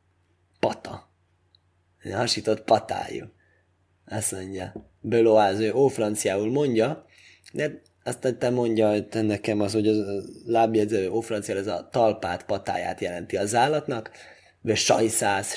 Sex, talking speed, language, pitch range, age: male, 120 wpm, Hungarian, 95-120 Hz, 20-39